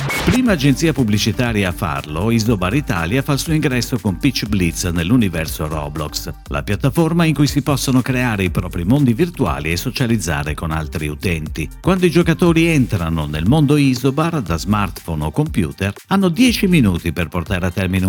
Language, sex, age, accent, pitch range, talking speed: Italian, male, 50-69, native, 90-140 Hz, 165 wpm